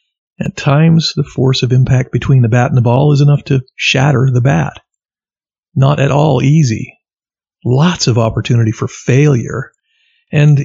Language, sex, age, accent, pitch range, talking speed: English, male, 50-69, American, 120-155 Hz, 160 wpm